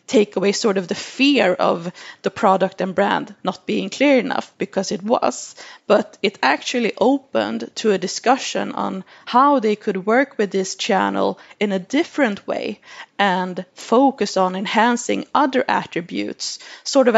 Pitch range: 195-250 Hz